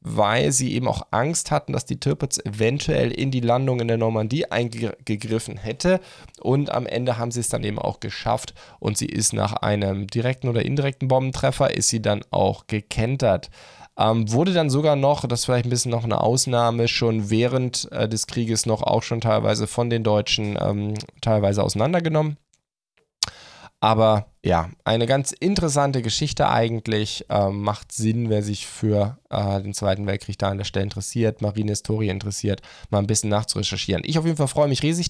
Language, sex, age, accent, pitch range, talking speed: German, male, 10-29, German, 105-135 Hz, 180 wpm